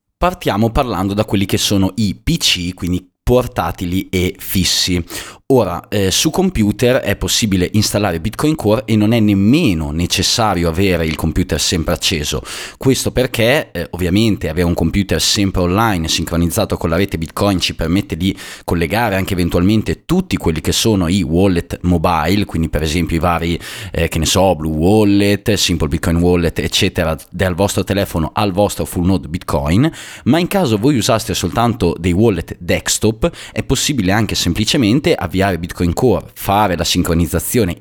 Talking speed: 160 wpm